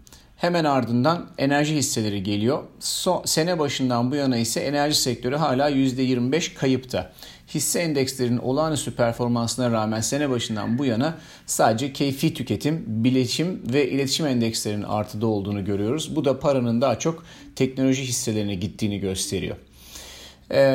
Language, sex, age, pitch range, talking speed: Turkish, male, 40-59, 115-150 Hz, 130 wpm